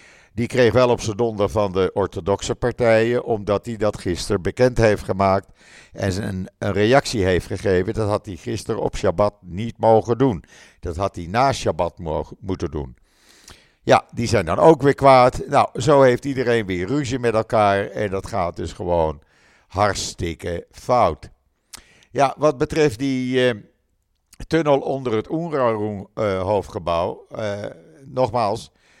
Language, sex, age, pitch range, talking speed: Dutch, male, 50-69, 95-125 Hz, 145 wpm